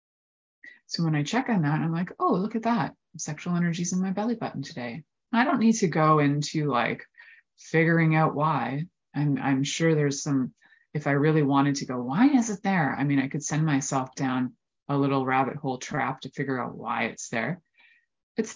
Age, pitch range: 20-39, 135-165 Hz